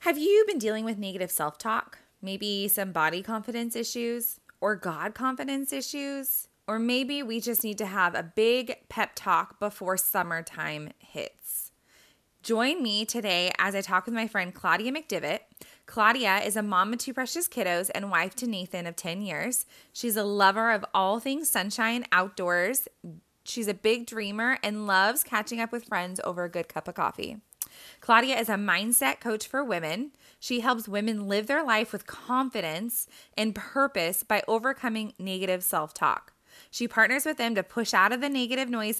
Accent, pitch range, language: American, 190-240 Hz, English